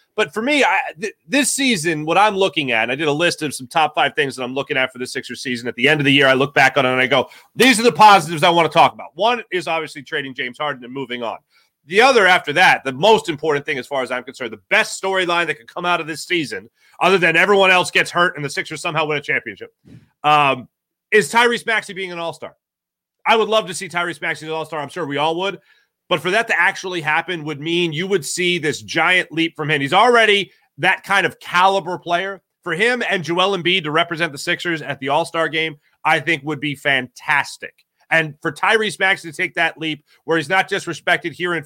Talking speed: 250 wpm